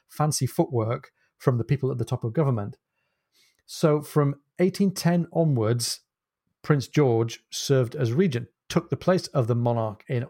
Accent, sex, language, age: British, male, English, 40-59